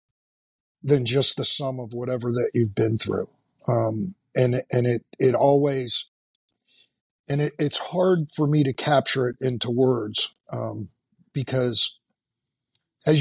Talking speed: 135 wpm